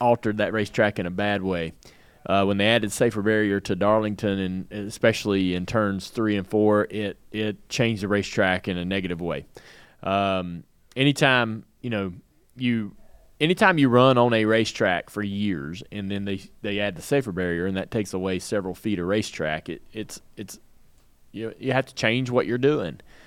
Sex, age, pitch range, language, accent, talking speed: male, 30-49, 95-125 Hz, English, American, 185 wpm